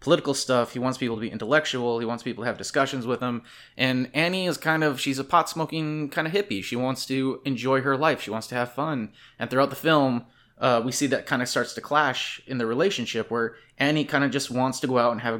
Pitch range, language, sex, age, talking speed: 120-140 Hz, English, male, 20-39, 255 wpm